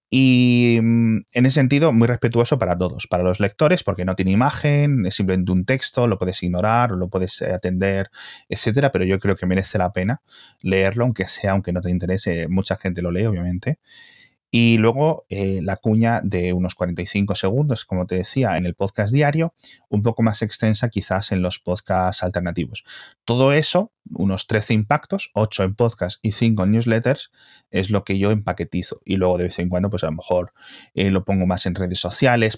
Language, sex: Spanish, male